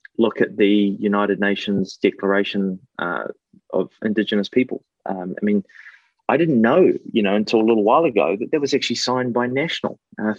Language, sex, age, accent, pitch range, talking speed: English, male, 30-49, Australian, 100-130 Hz, 180 wpm